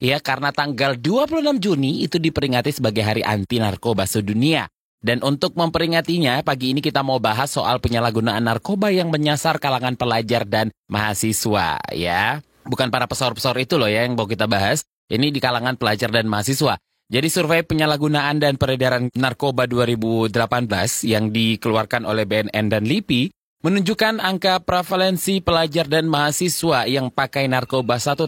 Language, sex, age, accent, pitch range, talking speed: Indonesian, male, 20-39, native, 115-160 Hz, 145 wpm